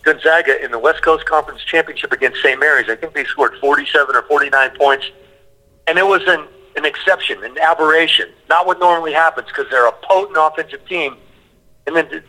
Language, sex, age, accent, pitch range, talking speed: English, male, 50-69, American, 155-205 Hz, 190 wpm